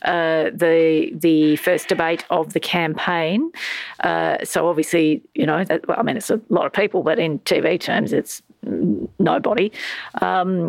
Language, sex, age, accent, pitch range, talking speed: English, female, 40-59, Australian, 160-200 Hz, 165 wpm